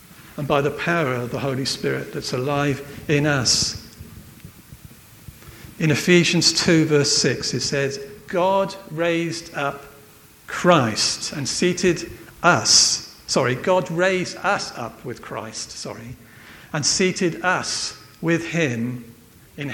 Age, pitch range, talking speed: 50-69, 110-160 Hz, 120 wpm